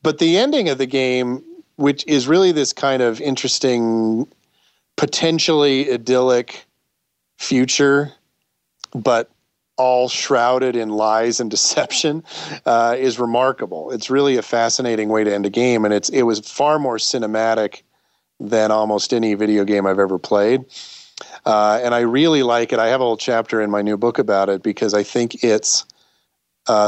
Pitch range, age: 105-130 Hz, 40-59